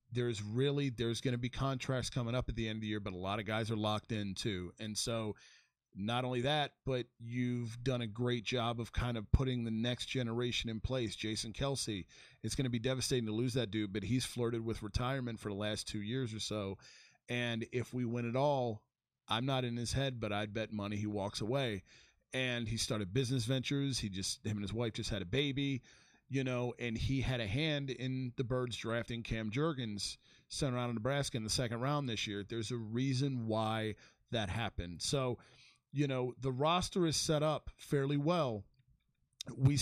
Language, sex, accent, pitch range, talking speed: English, male, American, 110-130 Hz, 210 wpm